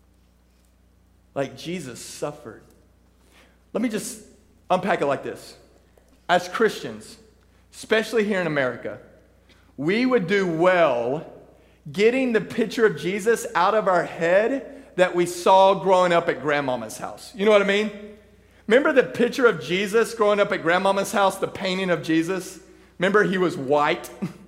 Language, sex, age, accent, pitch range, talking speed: English, male, 40-59, American, 170-205 Hz, 145 wpm